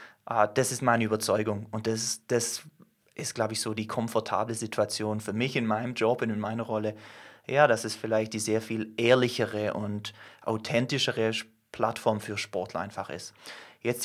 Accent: German